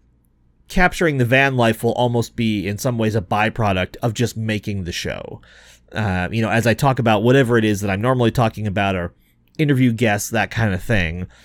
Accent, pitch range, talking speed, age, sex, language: American, 95-130 Hz, 205 wpm, 40-59, male, English